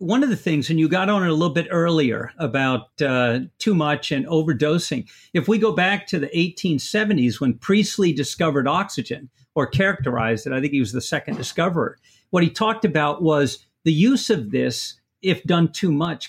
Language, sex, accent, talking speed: English, male, American, 195 wpm